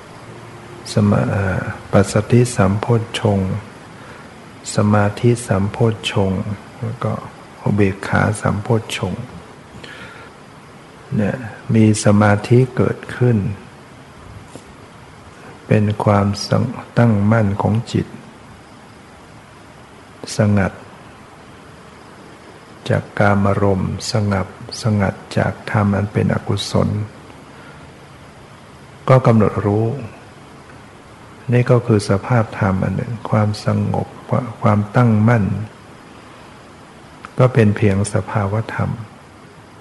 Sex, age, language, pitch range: male, 60-79, Thai, 100-120 Hz